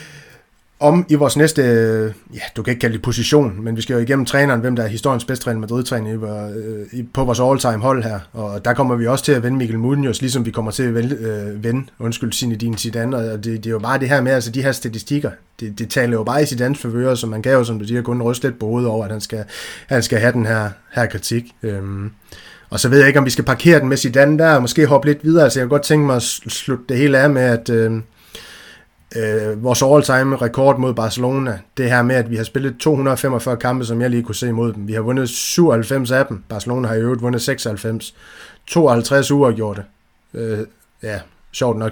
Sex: male